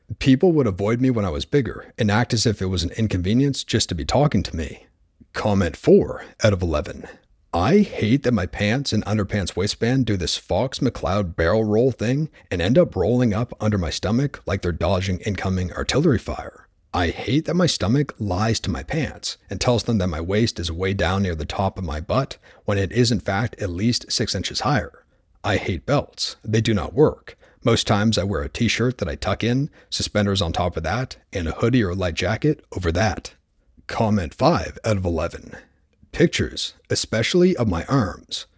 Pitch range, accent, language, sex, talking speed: 90-120 Hz, American, English, male, 200 wpm